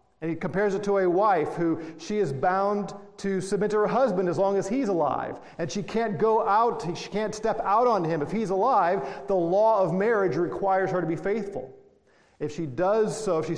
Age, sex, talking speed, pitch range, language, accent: 40-59, male, 215 wpm, 170-215 Hz, English, American